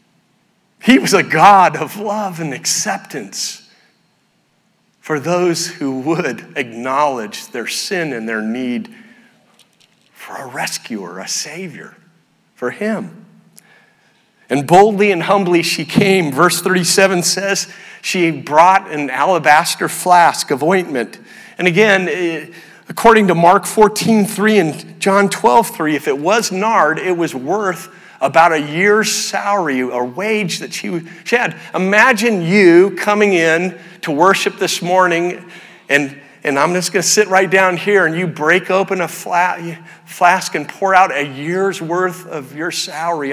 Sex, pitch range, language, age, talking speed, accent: male, 165-205 Hz, English, 40-59, 135 wpm, American